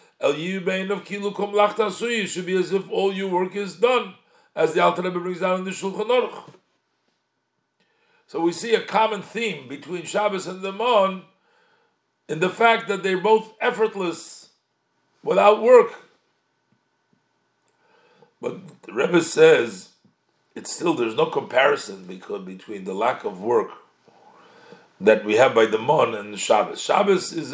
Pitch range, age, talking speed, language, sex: 165-230 Hz, 50-69, 135 wpm, English, male